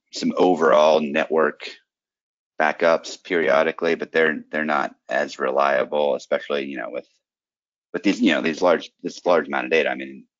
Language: English